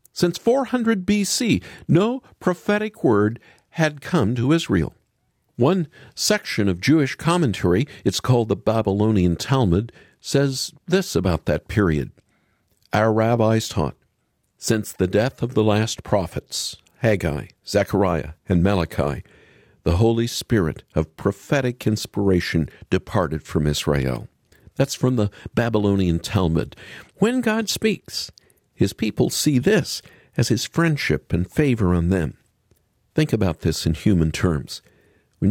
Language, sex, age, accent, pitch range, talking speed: English, male, 50-69, American, 90-140 Hz, 125 wpm